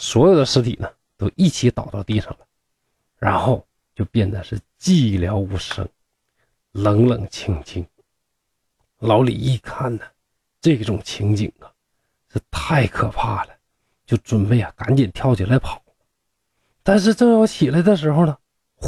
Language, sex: Chinese, male